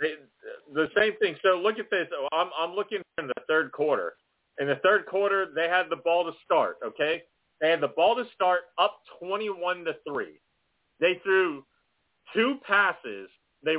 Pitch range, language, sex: 145-185 Hz, English, male